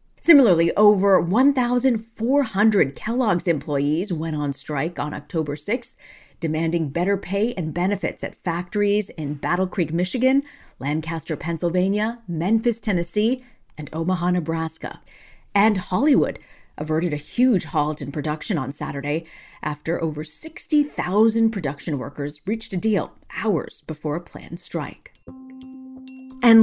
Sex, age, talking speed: female, 40-59, 120 wpm